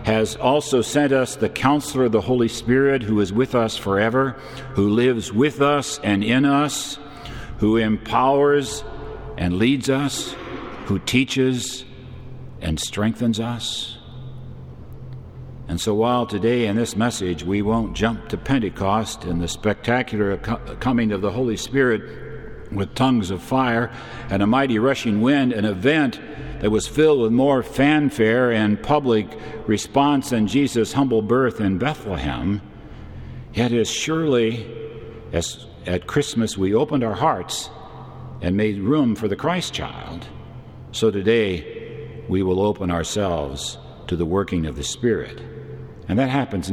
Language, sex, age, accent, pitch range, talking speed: English, male, 60-79, American, 100-125 Hz, 140 wpm